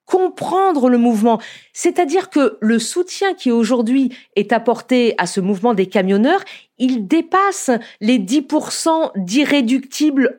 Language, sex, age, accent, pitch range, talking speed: French, female, 40-59, French, 225-305 Hz, 120 wpm